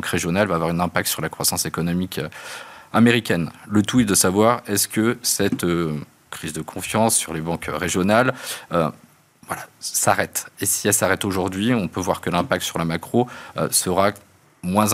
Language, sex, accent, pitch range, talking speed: French, male, French, 90-110 Hz, 170 wpm